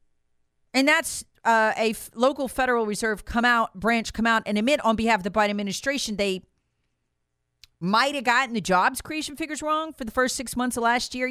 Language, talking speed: English, 200 wpm